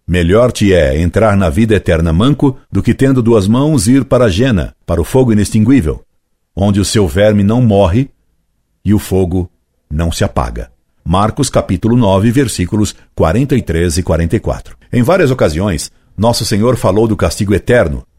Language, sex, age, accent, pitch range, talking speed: Portuguese, male, 60-79, Brazilian, 85-125 Hz, 160 wpm